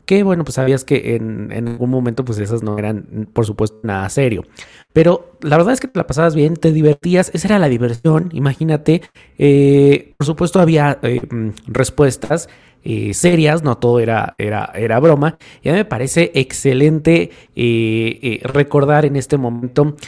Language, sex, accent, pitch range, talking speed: Spanish, male, Mexican, 125-150 Hz, 170 wpm